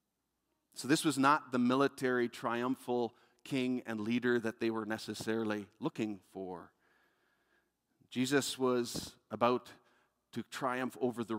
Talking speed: 120 wpm